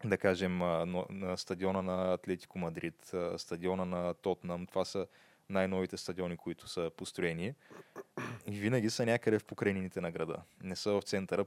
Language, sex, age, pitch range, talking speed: Bulgarian, male, 20-39, 90-100 Hz, 145 wpm